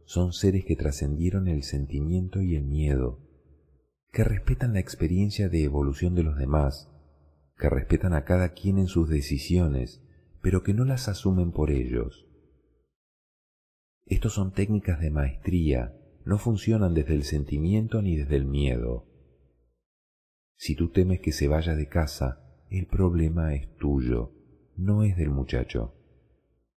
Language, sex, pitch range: Spanish, male, 70-90 Hz